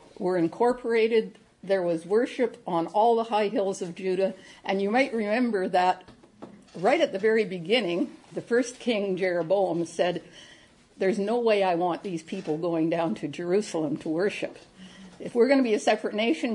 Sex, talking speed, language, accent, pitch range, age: female, 175 wpm, English, American, 180-235 Hz, 60-79